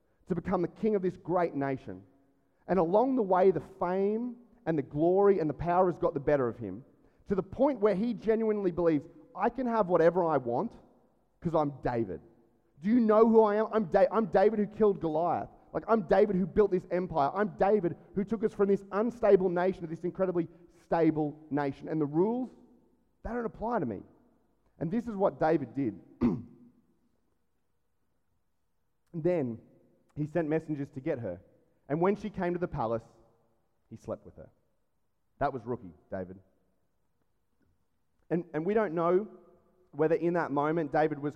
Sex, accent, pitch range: male, Australian, 145-195 Hz